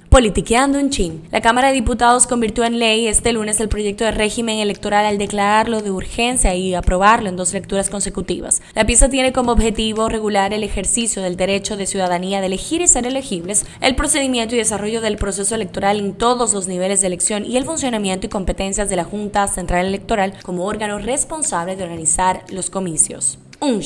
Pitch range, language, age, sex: 195-240 Hz, Spanish, 10-29, female